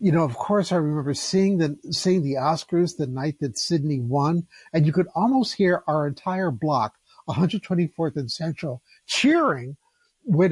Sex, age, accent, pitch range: male, 50-69, American, 145-185 Hz